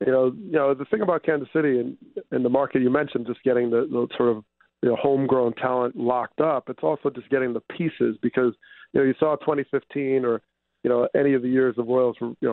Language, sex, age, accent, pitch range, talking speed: English, male, 40-59, American, 120-140 Hz, 240 wpm